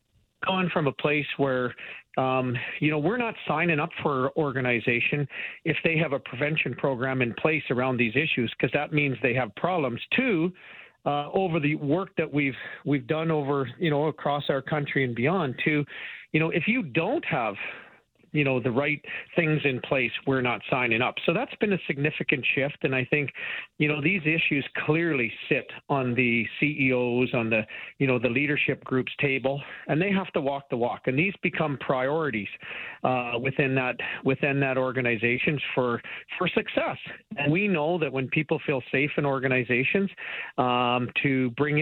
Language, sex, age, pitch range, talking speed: English, male, 40-59, 130-160 Hz, 185 wpm